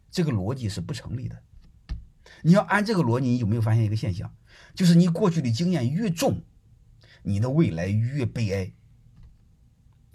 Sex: male